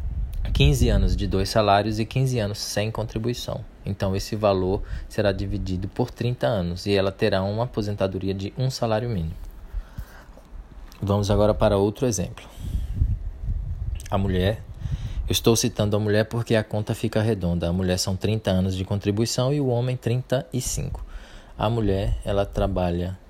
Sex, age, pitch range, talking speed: male, 20-39, 90-110 Hz, 150 wpm